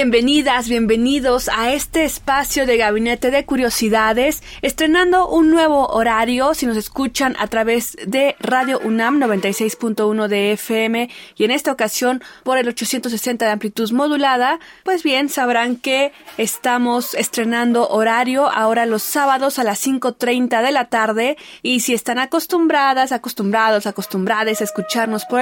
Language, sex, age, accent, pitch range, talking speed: Spanish, female, 20-39, Mexican, 220-265 Hz, 140 wpm